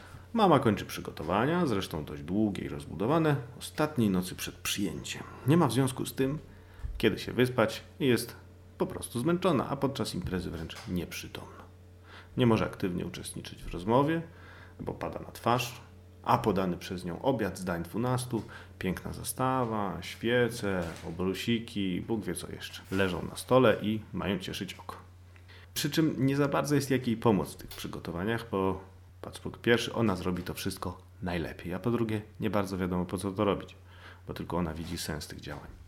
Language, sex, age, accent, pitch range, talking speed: Polish, male, 40-59, native, 90-115 Hz, 165 wpm